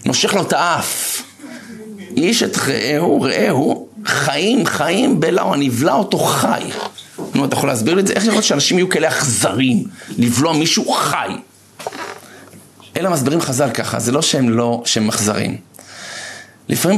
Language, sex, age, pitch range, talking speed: Hebrew, male, 50-69, 120-155 Hz, 150 wpm